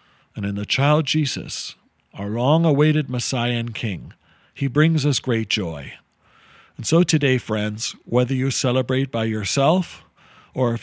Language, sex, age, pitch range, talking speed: English, male, 50-69, 110-150 Hz, 145 wpm